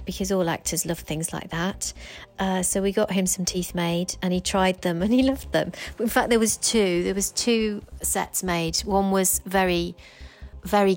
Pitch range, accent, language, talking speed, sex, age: 175-200 Hz, British, English, 200 wpm, female, 40-59